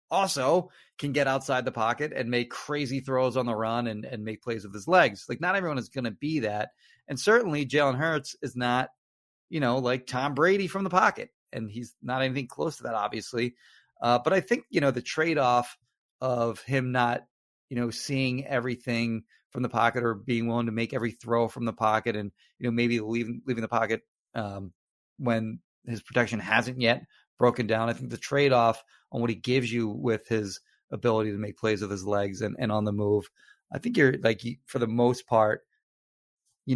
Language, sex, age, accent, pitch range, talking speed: English, male, 30-49, American, 115-135 Hz, 205 wpm